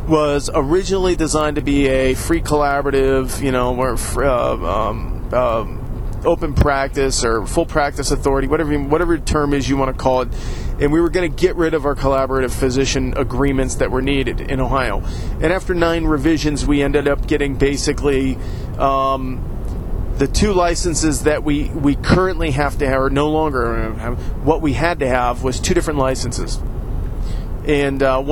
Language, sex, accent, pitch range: English, male, American, 130-160 Hz